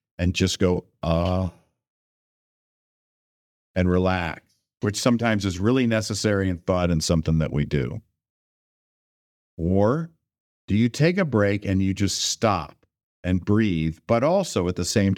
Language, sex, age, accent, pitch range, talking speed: English, male, 50-69, American, 85-105 Hz, 140 wpm